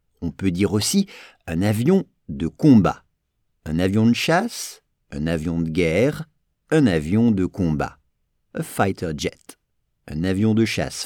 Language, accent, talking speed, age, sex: English, French, 145 wpm, 50-69, male